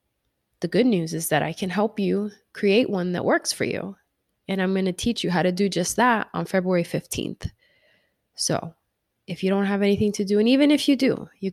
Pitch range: 175-205 Hz